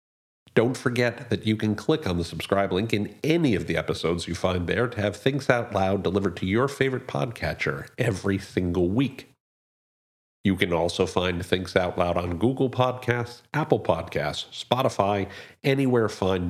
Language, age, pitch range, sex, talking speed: English, 50-69, 90-120 Hz, male, 165 wpm